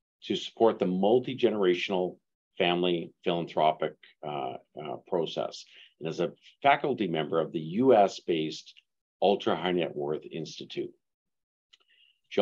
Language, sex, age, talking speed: English, male, 50-69, 110 wpm